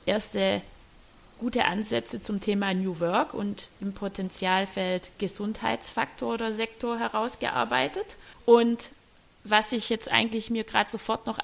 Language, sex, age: German, female, 30-49